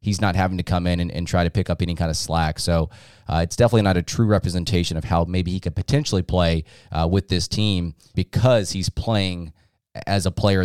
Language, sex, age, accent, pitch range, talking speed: English, male, 20-39, American, 85-110 Hz, 230 wpm